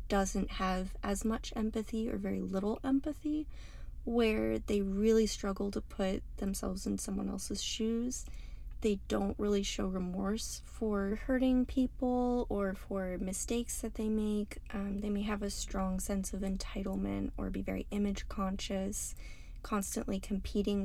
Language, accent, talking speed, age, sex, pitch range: English, American, 145 wpm, 20-39, female, 190-225 Hz